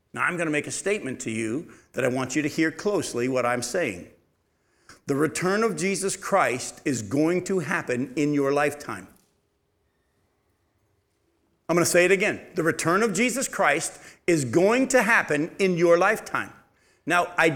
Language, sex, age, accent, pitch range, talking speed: English, male, 50-69, American, 150-240 Hz, 175 wpm